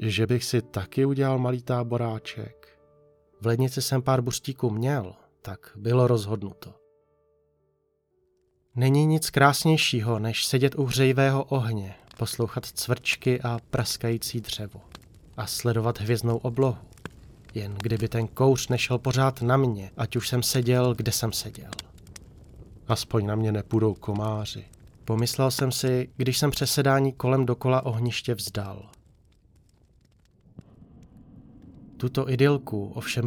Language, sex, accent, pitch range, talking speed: Czech, male, native, 115-135 Hz, 120 wpm